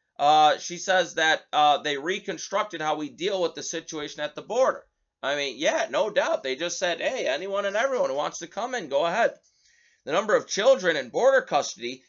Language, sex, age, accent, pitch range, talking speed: English, male, 30-49, American, 155-235 Hz, 210 wpm